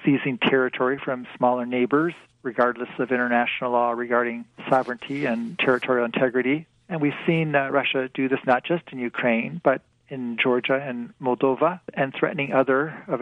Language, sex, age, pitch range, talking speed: English, male, 40-59, 120-140 Hz, 155 wpm